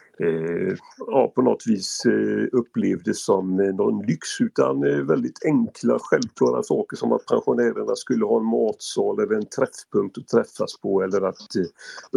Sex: male